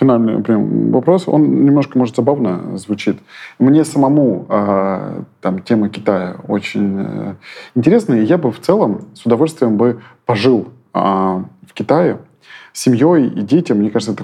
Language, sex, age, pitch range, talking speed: Russian, male, 20-39, 100-125 Hz, 145 wpm